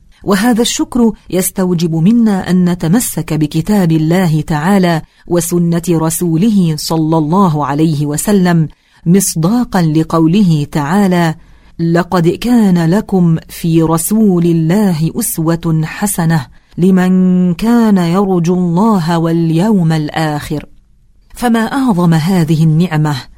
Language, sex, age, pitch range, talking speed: English, female, 40-59, 160-195 Hz, 90 wpm